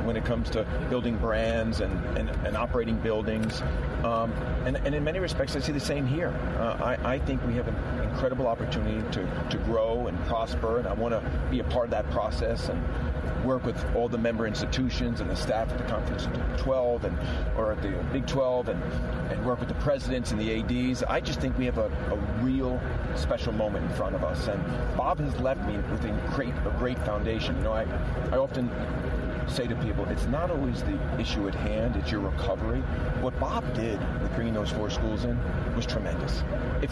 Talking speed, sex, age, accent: 210 wpm, male, 40-59, American